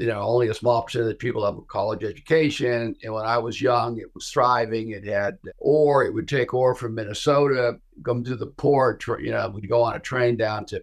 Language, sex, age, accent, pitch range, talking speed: English, male, 50-69, American, 105-140 Hz, 240 wpm